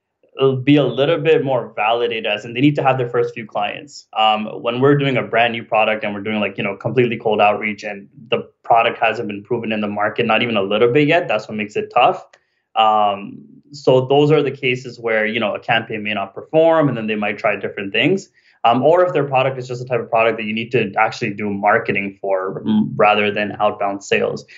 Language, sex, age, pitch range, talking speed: English, male, 20-39, 105-130 Hz, 240 wpm